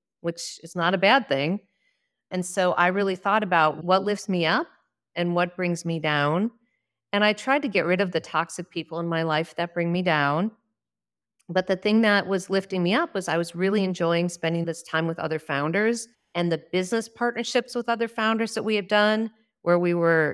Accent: American